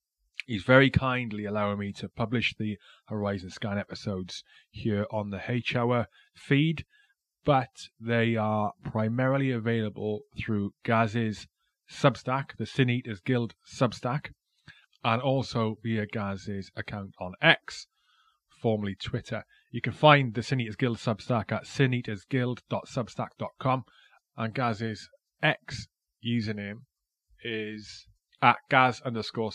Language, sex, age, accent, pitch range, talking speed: English, male, 30-49, British, 105-130 Hz, 115 wpm